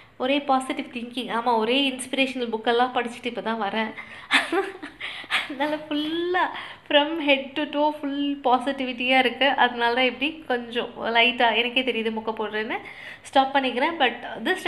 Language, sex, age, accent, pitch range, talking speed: Tamil, female, 20-39, native, 235-285 Hz, 135 wpm